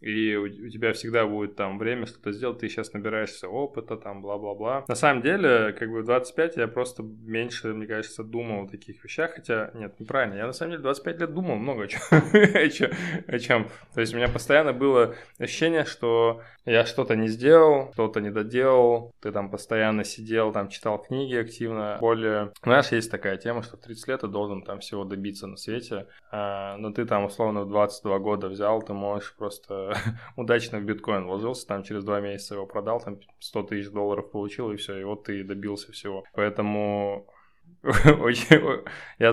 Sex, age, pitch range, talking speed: male, 20-39, 100-120 Hz, 175 wpm